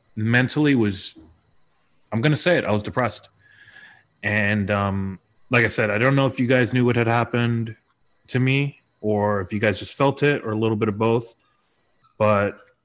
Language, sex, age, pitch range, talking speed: English, male, 30-49, 100-120 Hz, 185 wpm